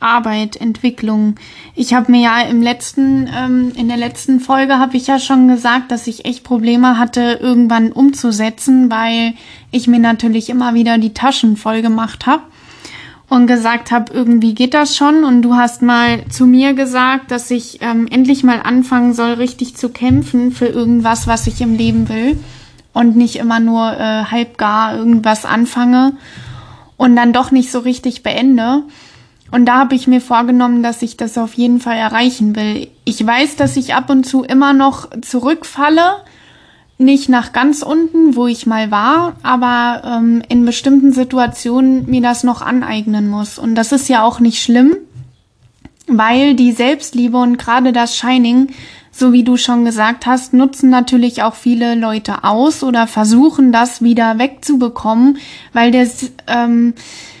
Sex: female